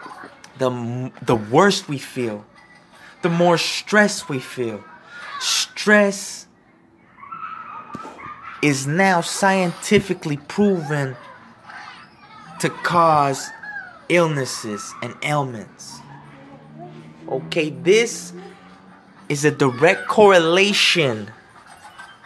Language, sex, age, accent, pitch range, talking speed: English, male, 20-39, American, 130-180 Hz, 70 wpm